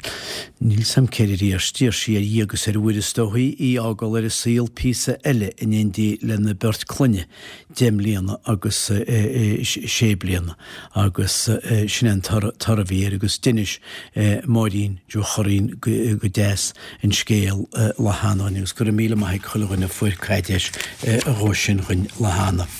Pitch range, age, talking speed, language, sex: 100-115 Hz, 60-79, 70 wpm, English, male